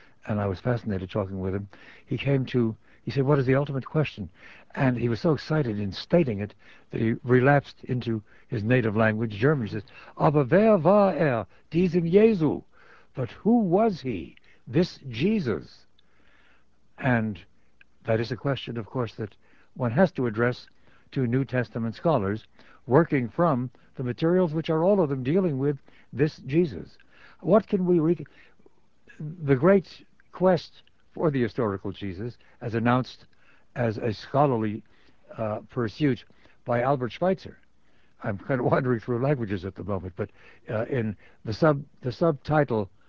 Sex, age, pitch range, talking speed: male, 60-79, 115-155 Hz, 155 wpm